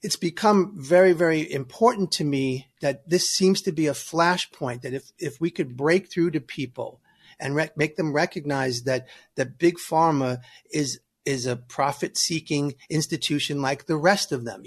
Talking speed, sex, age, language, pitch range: 175 wpm, male, 40-59, English, 140-175 Hz